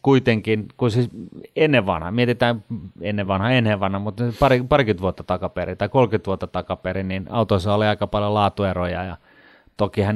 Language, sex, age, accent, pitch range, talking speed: Finnish, male, 30-49, native, 95-110 Hz, 155 wpm